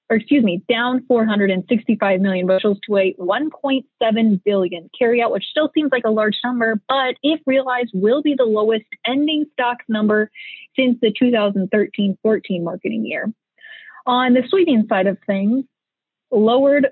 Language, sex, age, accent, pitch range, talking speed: English, female, 20-39, American, 205-255 Hz, 150 wpm